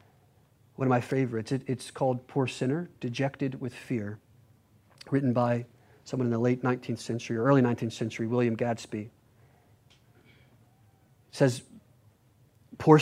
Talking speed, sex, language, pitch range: 135 wpm, male, English, 115-130 Hz